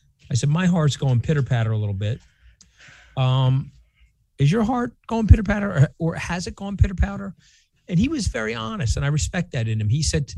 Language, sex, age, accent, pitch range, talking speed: English, male, 40-59, American, 120-155 Hz, 200 wpm